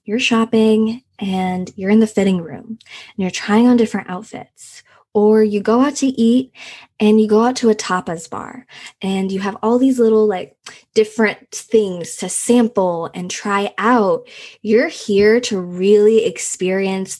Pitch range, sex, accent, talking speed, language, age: 195-225 Hz, female, American, 165 wpm, English, 20-39